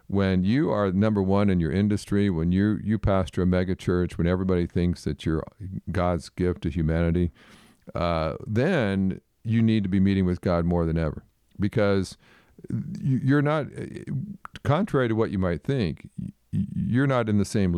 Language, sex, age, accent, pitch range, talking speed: English, male, 50-69, American, 85-110 Hz, 165 wpm